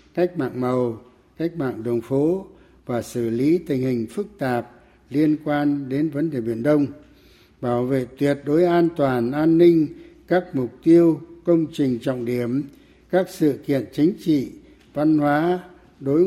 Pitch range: 125-165 Hz